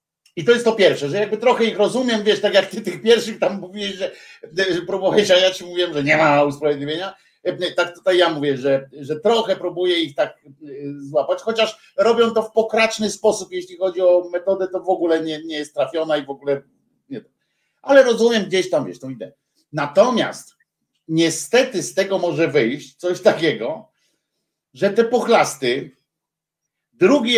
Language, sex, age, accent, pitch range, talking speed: Polish, male, 50-69, native, 140-195 Hz, 175 wpm